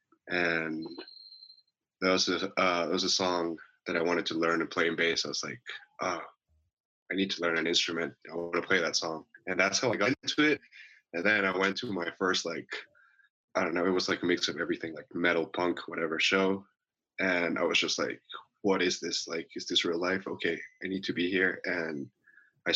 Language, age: English, 20-39